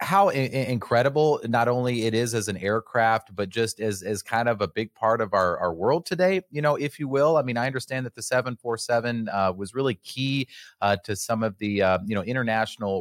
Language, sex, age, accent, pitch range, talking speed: English, male, 30-49, American, 100-125 Hz, 225 wpm